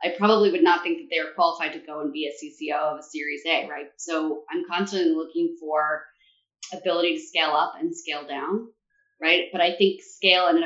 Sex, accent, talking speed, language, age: female, American, 215 wpm, English, 20-39